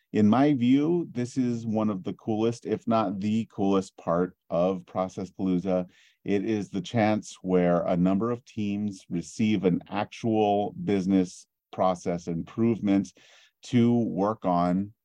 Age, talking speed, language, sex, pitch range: 40-59, 140 wpm, English, male, 90-120 Hz